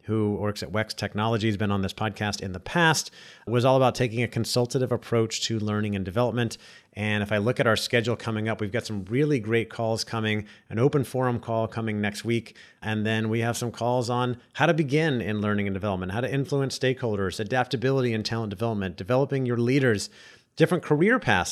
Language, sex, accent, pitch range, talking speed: English, male, American, 105-130 Hz, 205 wpm